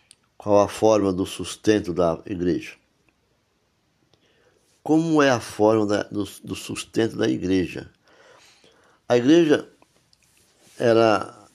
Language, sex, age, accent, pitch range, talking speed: Portuguese, male, 60-79, Brazilian, 95-120 Hz, 105 wpm